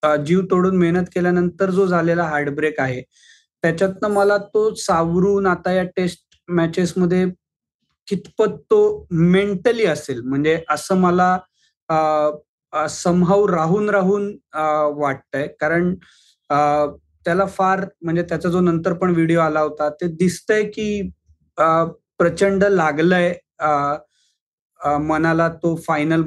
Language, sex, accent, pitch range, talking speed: Marathi, male, native, 155-190 Hz, 75 wpm